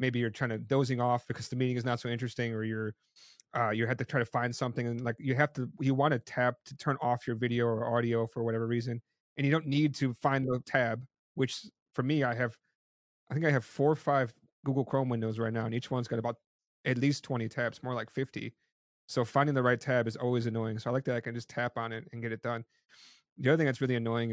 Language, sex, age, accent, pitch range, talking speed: English, male, 30-49, American, 115-130 Hz, 265 wpm